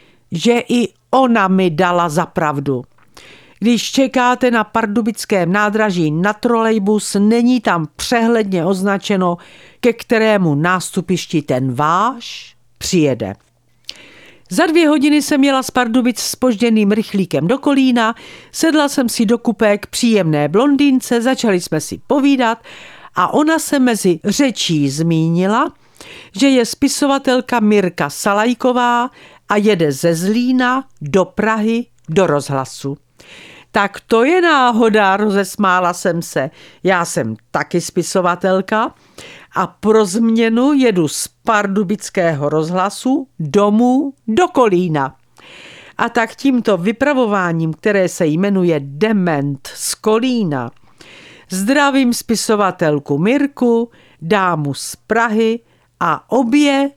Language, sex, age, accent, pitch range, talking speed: Czech, female, 50-69, native, 175-240 Hz, 110 wpm